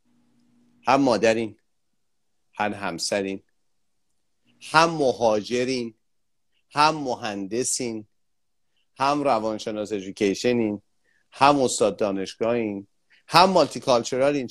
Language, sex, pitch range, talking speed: Persian, male, 105-150 Hz, 65 wpm